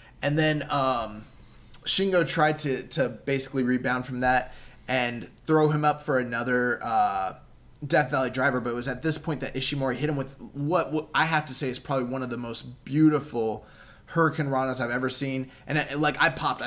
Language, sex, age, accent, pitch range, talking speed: English, male, 20-39, American, 125-150 Hz, 200 wpm